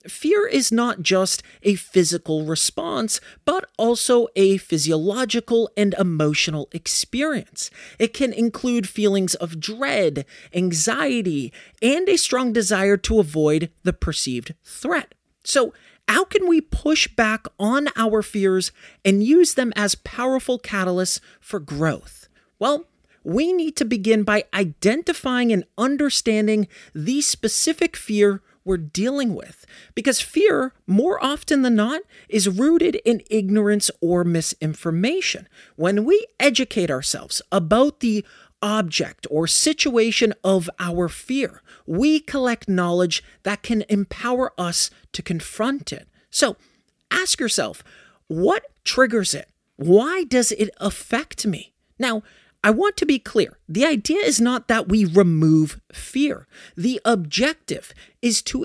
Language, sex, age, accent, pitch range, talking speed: English, male, 30-49, American, 185-260 Hz, 130 wpm